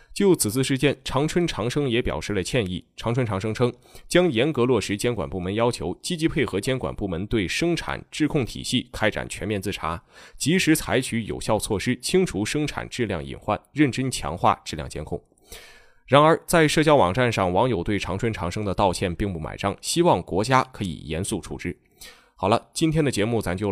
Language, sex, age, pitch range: Chinese, male, 20-39, 95-140 Hz